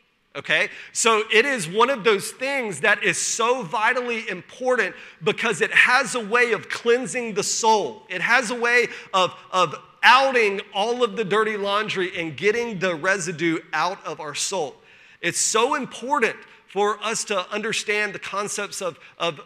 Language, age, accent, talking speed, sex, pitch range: English, 40-59, American, 165 wpm, male, 180-220 Hz